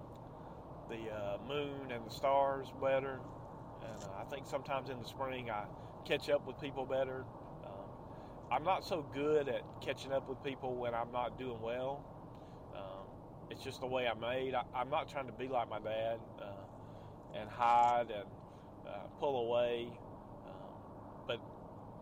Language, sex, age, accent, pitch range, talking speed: English, male, 40-59, American, 115-135 Hz, 165 wpm